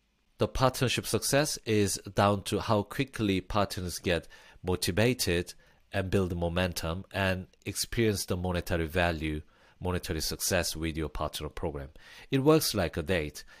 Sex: male